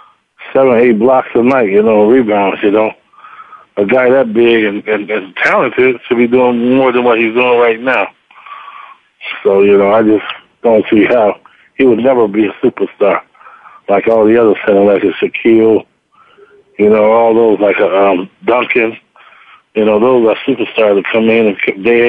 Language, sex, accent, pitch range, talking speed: English, male, American, 105-125 Hz, 180 wpm